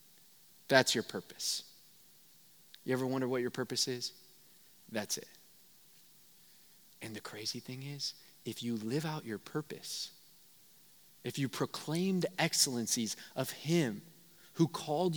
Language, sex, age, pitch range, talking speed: English, male, 30-49, 125-185 Hz, 125 wpm